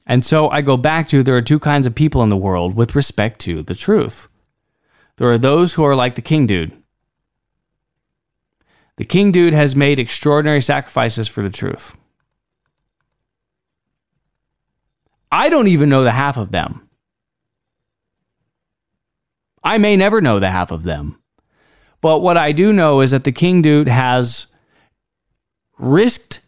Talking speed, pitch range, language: 150 wpm, 115-170 Hz, English